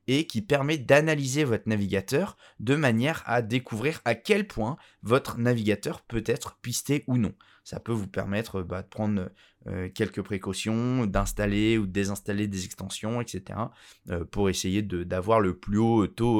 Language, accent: French, French